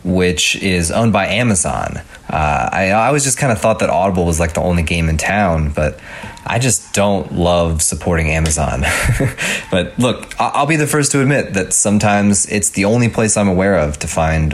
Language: English